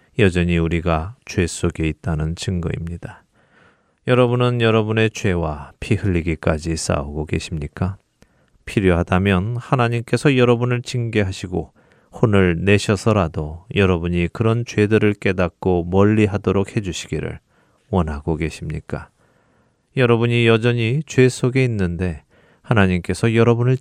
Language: Korean